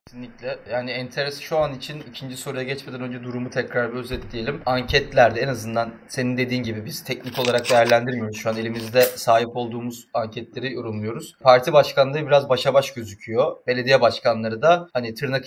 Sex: male